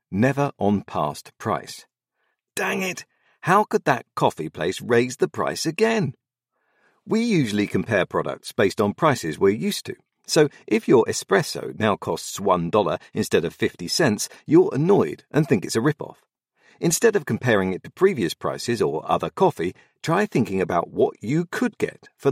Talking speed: 165 wpm